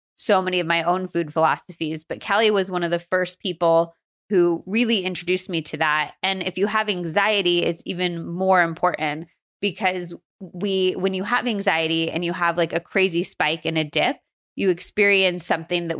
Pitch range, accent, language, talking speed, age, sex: 160-190 Hz, American, English, 190 wpm, 20-39, female